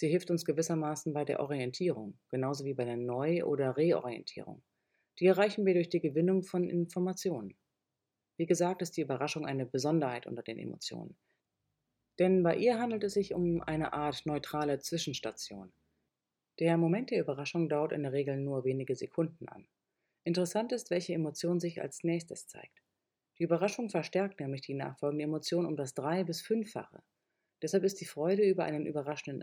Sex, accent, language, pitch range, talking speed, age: female, German, German, 145-180 Hz, 170 wpm, 30-49